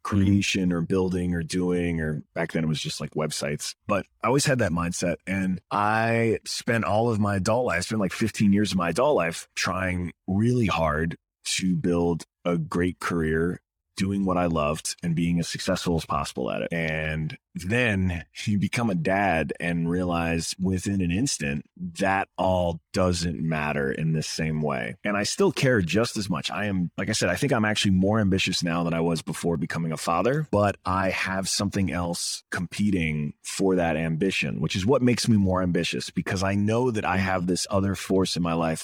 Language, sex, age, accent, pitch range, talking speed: English, male, 30-49, American, 85-100 Hz, 200 wpm